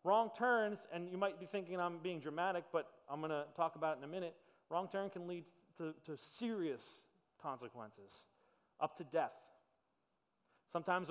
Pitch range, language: 160-185 Hz, English